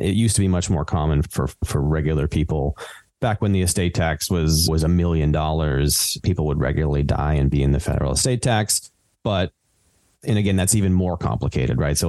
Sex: male